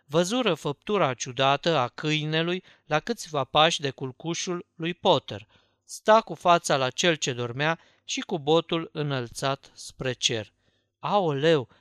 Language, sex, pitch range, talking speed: Romanian, male, 135-185 Hz, 130 wpm